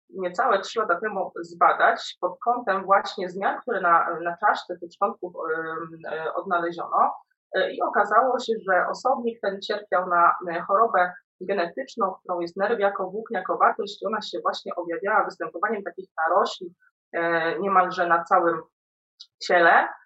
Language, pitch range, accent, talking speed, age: Polish, 170-225 Hz, native, 145 wpm, 20-39